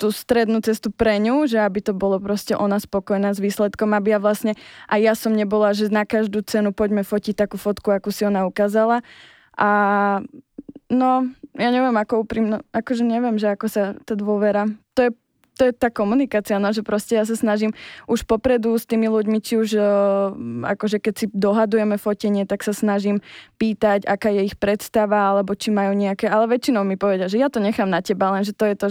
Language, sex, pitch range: Slovak, female, 200-225 Hz